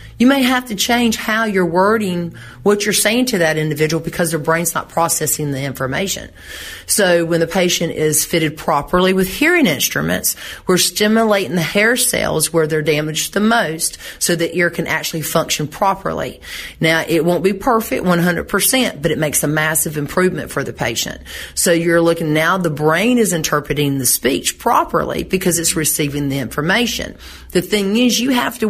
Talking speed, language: 180 wpm, English